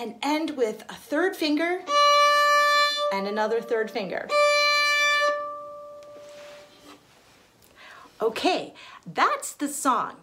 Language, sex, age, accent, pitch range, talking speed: English, female, 40-59, American, 225-295 Hz, 80 wpm